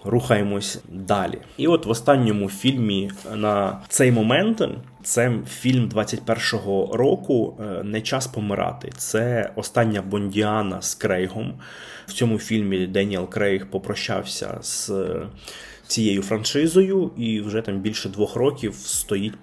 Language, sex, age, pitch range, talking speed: Ukrainian, male, 20-39, 95-115 Hz, 115 wpm